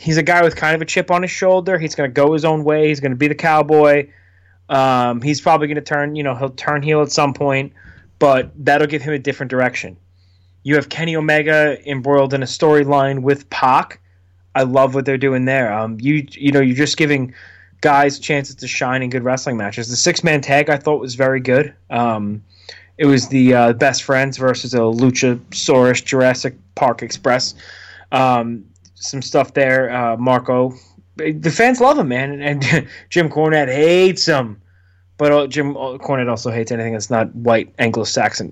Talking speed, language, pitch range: 195 wpm, English, 115-150 Hz